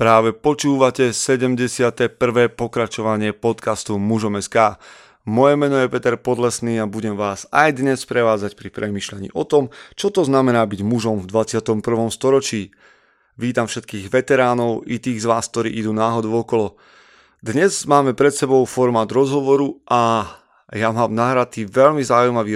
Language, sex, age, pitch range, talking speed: Slovak, male, 30-49, 110-125 Hz, 140 wpm